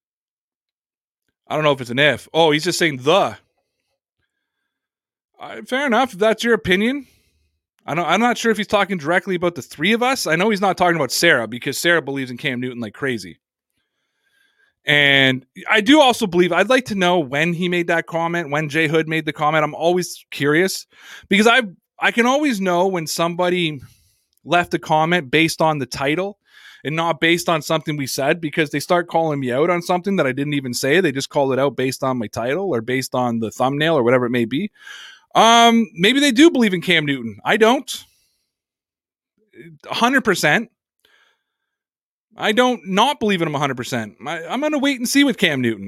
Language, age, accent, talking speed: English, 20-39, American, 200 wpm